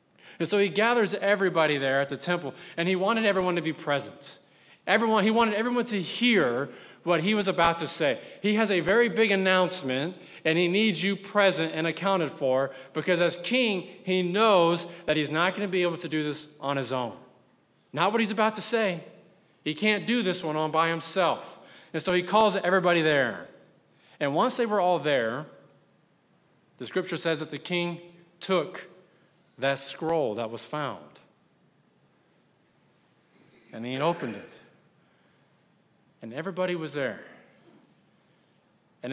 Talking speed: 165 wpm